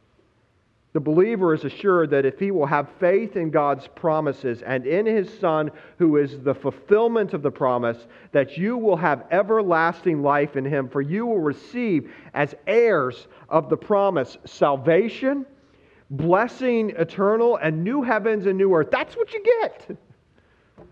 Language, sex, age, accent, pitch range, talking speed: English, male, 40-59, American, 115-165 Hz, 155 wpm